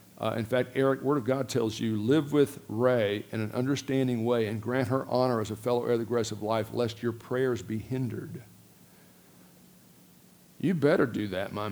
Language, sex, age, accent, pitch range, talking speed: English, male, 50-69, American, 110-140 Hz, 200 wpm